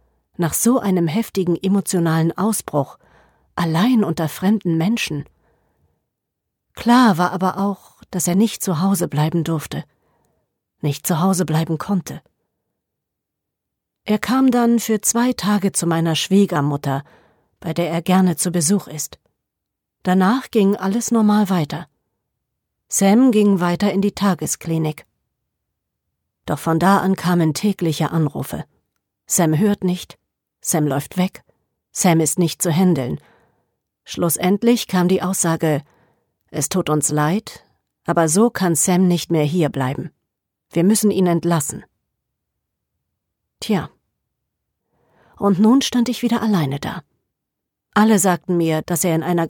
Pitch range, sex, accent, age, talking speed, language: 155-200 Hz, female, German, 40-59, 125 wpm, German